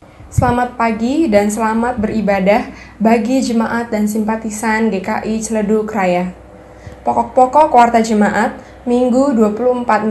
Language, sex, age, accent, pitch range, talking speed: Indonesian, female, 10-29, native, 205-245 Hz, 100 wpm